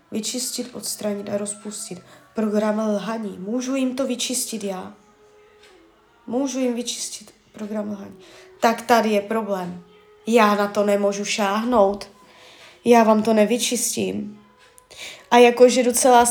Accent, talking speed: native, 120 wpm